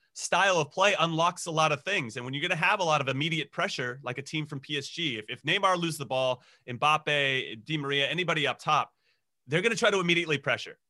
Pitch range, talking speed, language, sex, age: 130-160 Hz, 235 wpm, English, male, 30-49